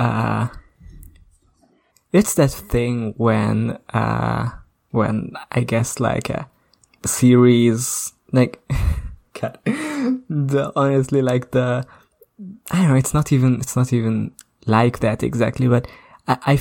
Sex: male